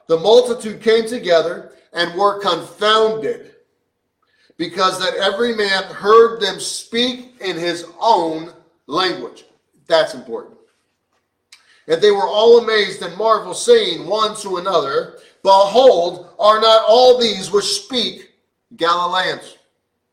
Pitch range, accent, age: 185-240 Hz, American, 40-59